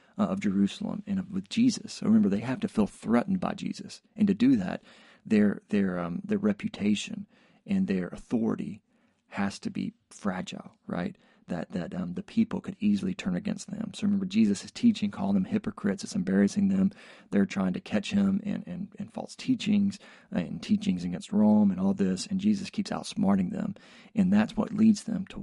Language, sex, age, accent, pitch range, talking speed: English, male, 40-59, American, 200-220 Hz, 190 wpm